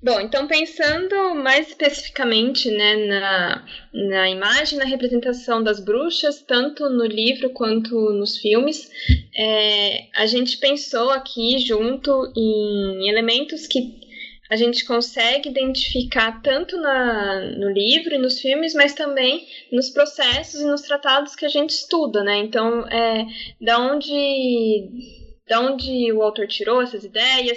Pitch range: 220-280 Hz